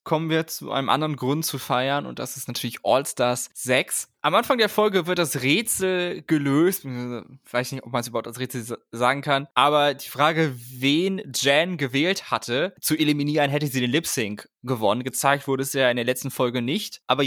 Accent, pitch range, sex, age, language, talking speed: German, 135-185 Hz, male, 20-39, German, 200 wpm